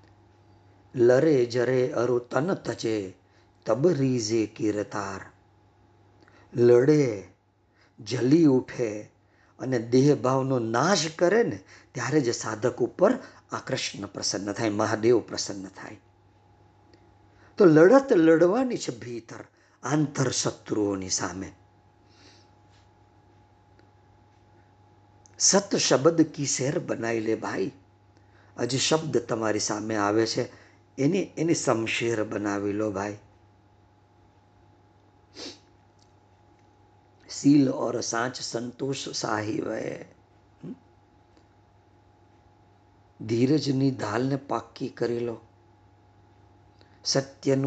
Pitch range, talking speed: 105-135 Hz, 40 wpm